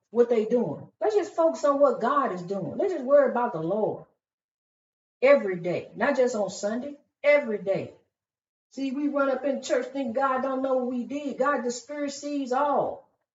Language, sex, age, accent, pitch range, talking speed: English, female, 40-59, American, 250-300 Hz, 195 wpm